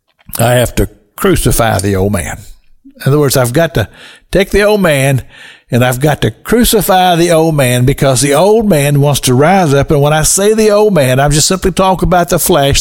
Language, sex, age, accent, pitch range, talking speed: English, male, 60-79, American, 120-180 Hz, 220 wpm